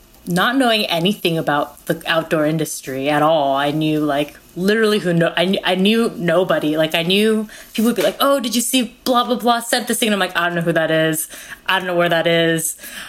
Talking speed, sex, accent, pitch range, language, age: 235 wpm, female, American, 165-205 Hz, English, 20-39